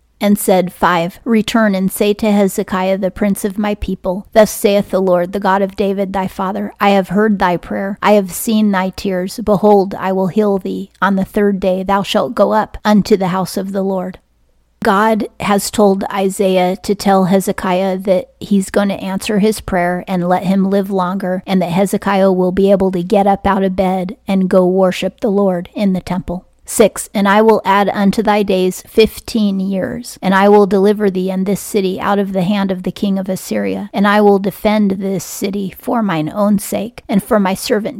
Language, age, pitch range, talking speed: English, 30-49, 185-205 Hz, 210 wpm